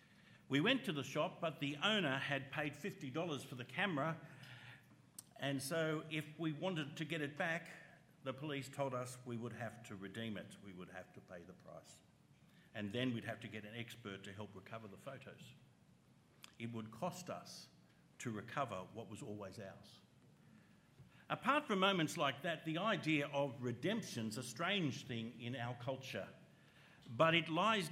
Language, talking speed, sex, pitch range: English, 175 wpm, male, 120-170 Hz